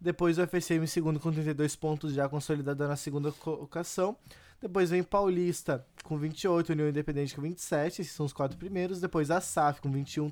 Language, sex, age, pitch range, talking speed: Portuguese, male, 20-39, 145-180 Hz, 180 wpm